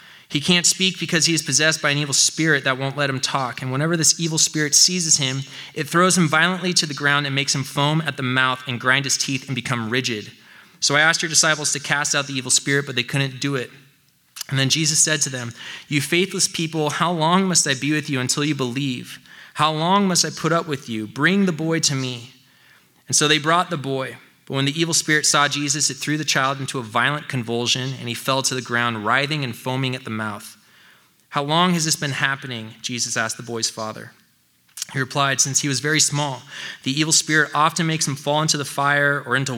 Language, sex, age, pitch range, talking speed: English, male, 20-39, 130-155 Hz, 235 wpm